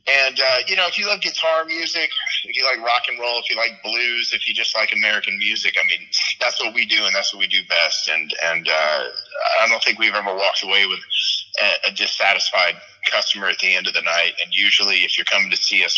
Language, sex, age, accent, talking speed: English, male, 30-49, American, 245 wpm